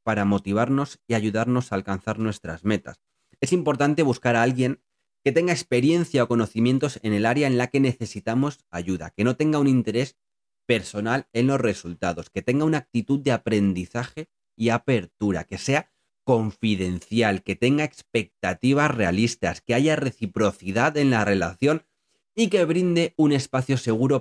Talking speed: 155 wpm